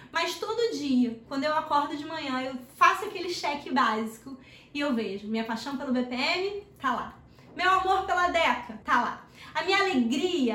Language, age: Portuguese, 20-39